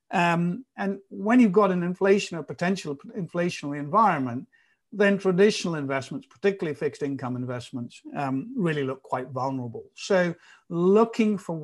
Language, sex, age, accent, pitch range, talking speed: English, male, 60-79, British, 130-180 Hz, 135 wpm